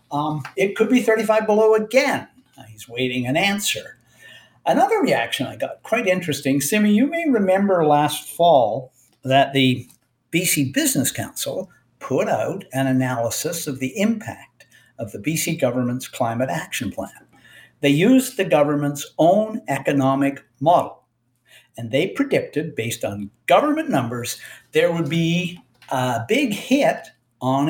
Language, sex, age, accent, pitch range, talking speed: English, male, 60-79, American, 130-195 Hz, 135 wpm